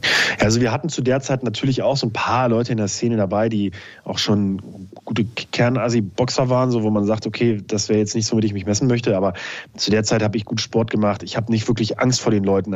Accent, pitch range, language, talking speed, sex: German, 105-125 Hz, German, 255 wpm, male